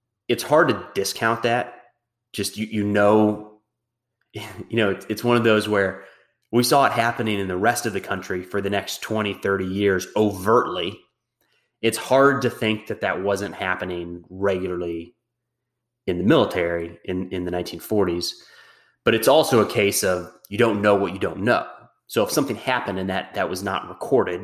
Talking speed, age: 180 wpm, 30-49